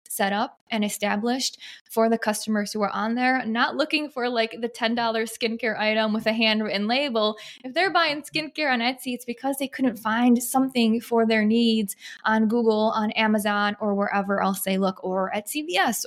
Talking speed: 185 wpm